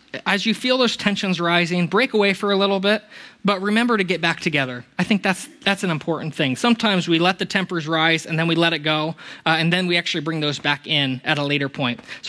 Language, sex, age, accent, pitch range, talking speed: English, male, 20-39, American, 140-195 Hz, 250 wpm